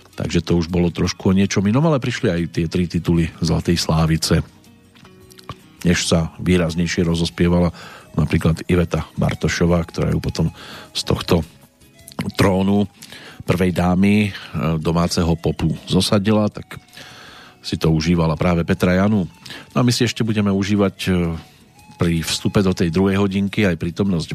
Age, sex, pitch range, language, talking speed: 50-69, male, 85-105 Hz, Slovak, 140 wpm